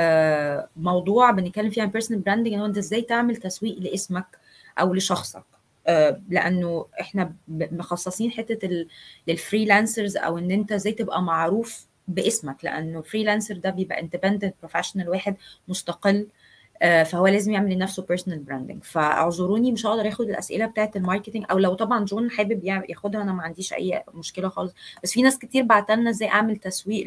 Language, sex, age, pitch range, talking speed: Arabic, female, 20-39, 170-210 Hz, 155 wpm